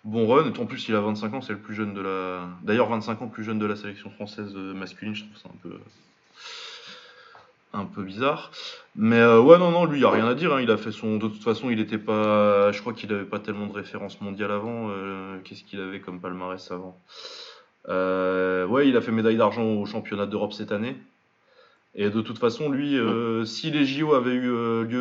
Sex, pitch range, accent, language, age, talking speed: male, 95-110 Hz, French, French, 20-39, 235 wpm